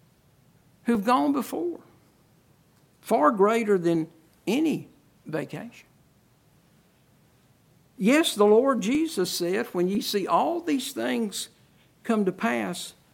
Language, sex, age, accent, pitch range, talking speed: English, male, 60-79, American, 160-260 Hz, 100 wpm